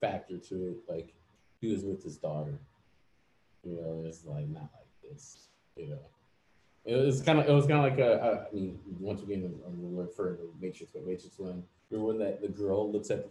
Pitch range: 85-120 Hz